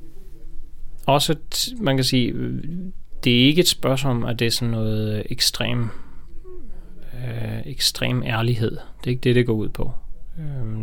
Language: Danish